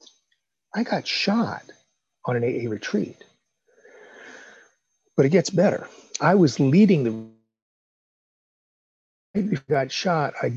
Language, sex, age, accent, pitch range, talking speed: English, male, 40-59, American, 115-165 Hz, 115 wpm